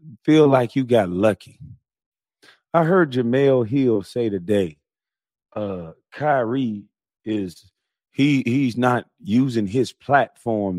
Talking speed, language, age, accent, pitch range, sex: 110 wpm, English, 40-59, American, 100-140 Hz, male